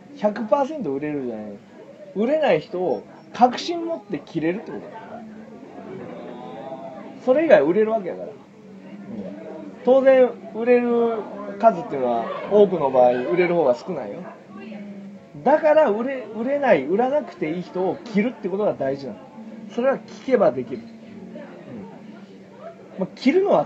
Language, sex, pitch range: Japanese, male, 190-245 Hz